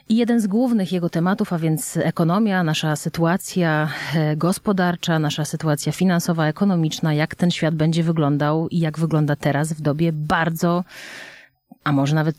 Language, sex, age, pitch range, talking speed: Polish, female, 30-49, 150-180 Hz, 150 wpm